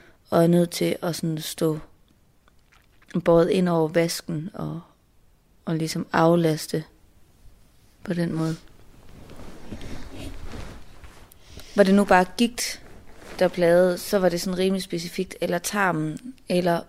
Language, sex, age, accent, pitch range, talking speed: Danish, female, 30-49, native, 160-200 Hz, 120 wpm